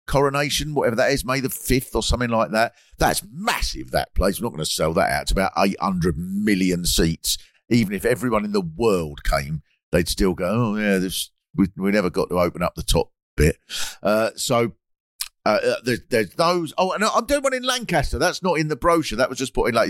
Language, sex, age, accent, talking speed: English, male, 50-69, British, 225 wpm